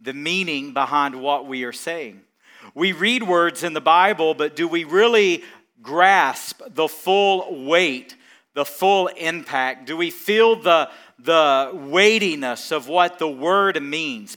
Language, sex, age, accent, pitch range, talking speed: English, male, 40-59, American, 145-200 Hz, 145 wpm